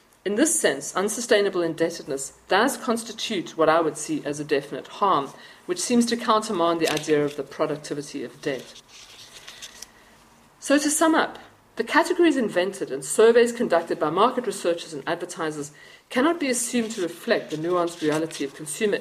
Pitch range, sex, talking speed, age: 160-230 Hz, female, 160 wpm, 50-69